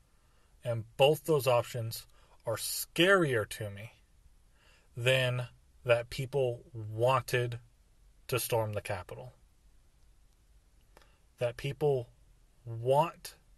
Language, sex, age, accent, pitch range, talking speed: English, male, 30-49, American, 110-135 Hz, 85 wpm